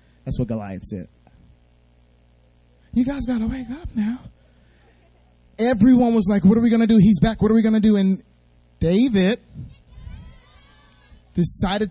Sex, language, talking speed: male, English, 155 wpm